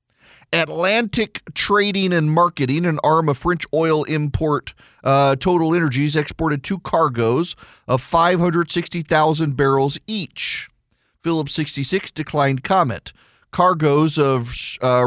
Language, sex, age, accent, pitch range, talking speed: English, male, 40-59, American, 120-170 Hz, 125 wpm